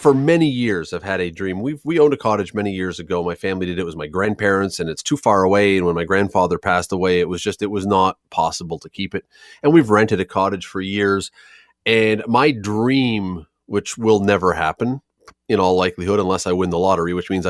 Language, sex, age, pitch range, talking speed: English, male, 30-49, 90-140 Hz, 230 wpm